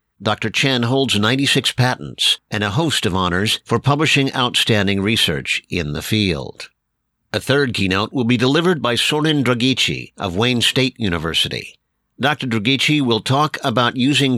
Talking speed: 150 wpm